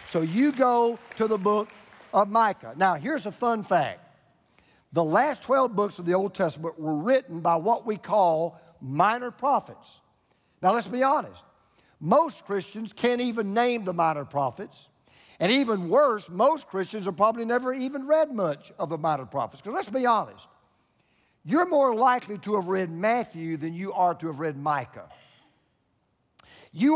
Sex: male